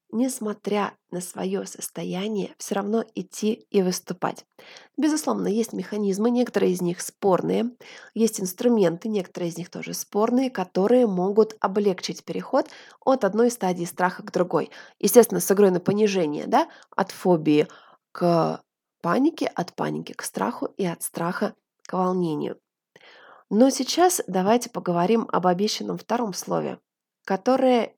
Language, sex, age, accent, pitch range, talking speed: Russian, female, 20-39, native, 185-240 Hz, 130 wpm